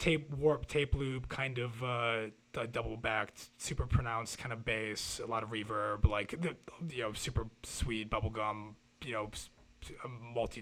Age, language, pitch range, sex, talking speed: 30-49, English, 100-115 Hz, male, 160 wpm